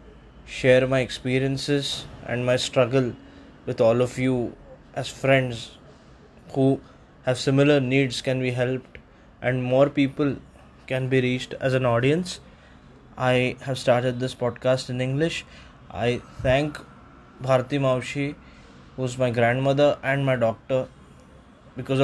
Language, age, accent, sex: Marathi, 20-39, native, male